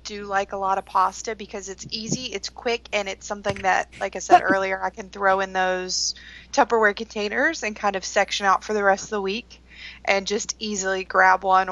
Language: English